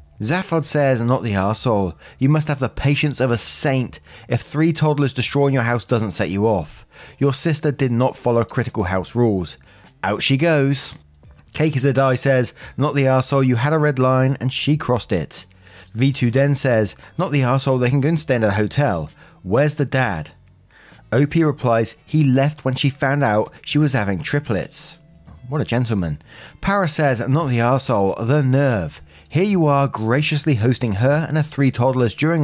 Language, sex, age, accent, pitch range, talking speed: English, male, 30-49, British, 115-150 Hz, 185 wpm